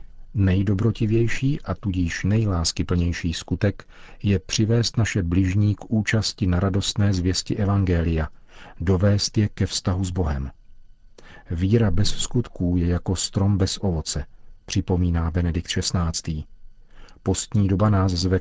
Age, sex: 40-59, male